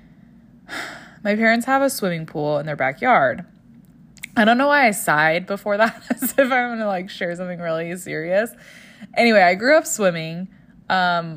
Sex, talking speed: female, 175 wpm